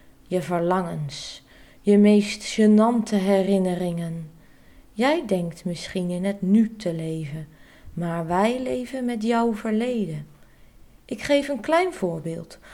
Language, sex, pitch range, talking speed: Dutch, female, 185-275 Hz, 120 wpm